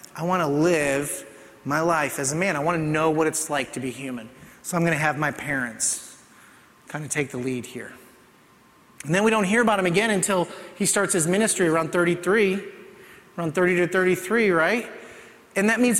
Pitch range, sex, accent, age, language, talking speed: 155-220 Hz, male, American, 30-49, English, 205 wpm